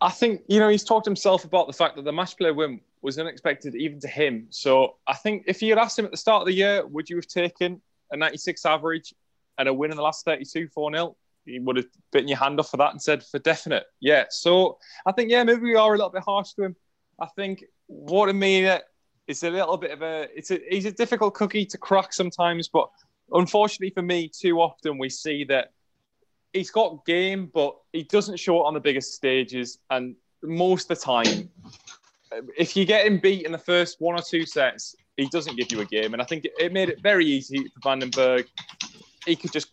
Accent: British